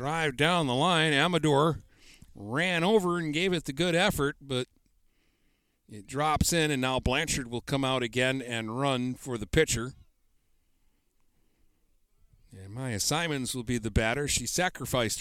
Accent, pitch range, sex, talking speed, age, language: American, 95-135 Hz, male, 150 wpm, 50-69, English